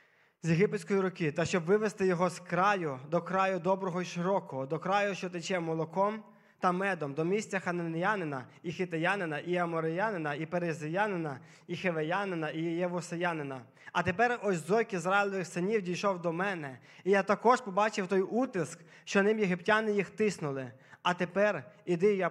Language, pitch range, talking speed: Ukrainian, 160-200 Hz, 155 wpm